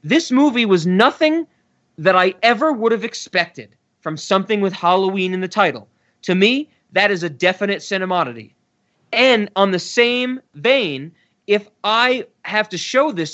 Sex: male